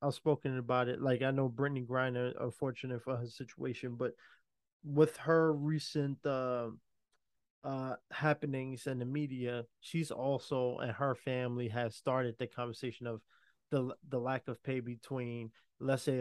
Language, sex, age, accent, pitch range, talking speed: English, male, 20-39, American, 120-150 Hz, 150 wpm